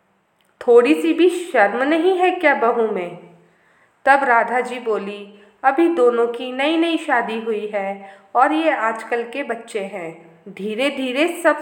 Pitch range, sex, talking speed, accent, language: 205-270 Hz, female, 155 wpm, native, Hindi